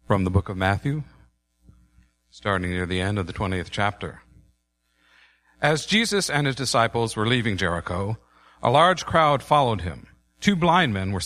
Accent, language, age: American, English, 50-69